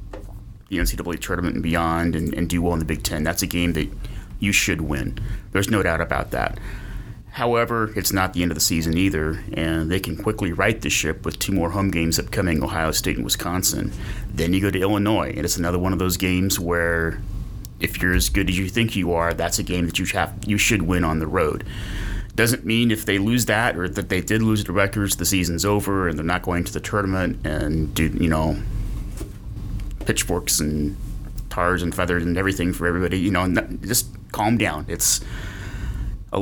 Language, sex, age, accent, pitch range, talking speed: English, male, 30-49, American, 85-110 Hz, 210 wpm